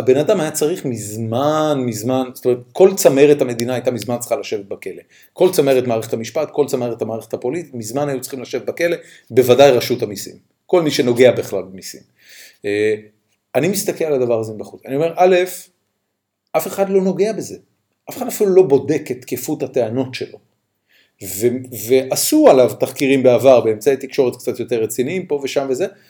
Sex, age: male, 40-59